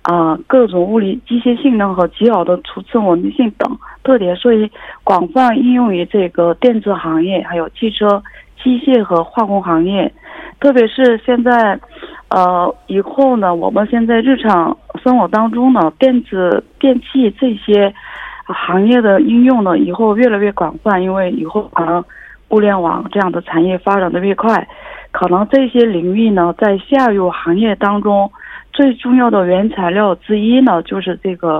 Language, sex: Korean, female